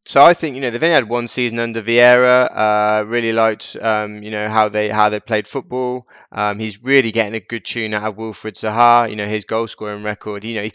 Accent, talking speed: British, 245 wpm